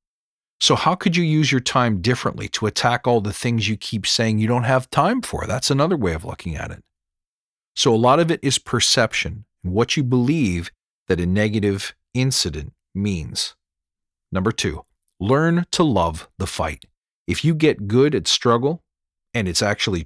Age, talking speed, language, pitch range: 40-59, 175 wpm, English, 90-125 Hz